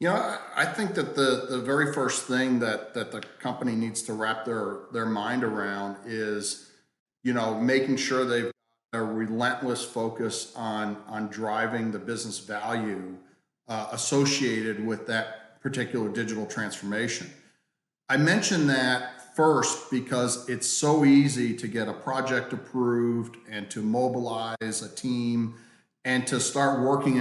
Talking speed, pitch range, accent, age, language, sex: 145 wpm, 110-130 Hz, American, 40-59, English, male